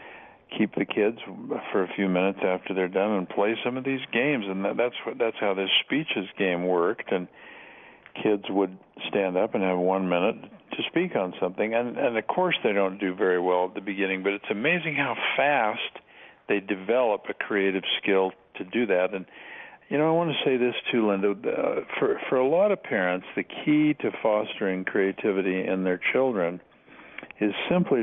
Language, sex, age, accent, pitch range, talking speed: English, male, 50-69, American, 95-105 Hz, 190 wpm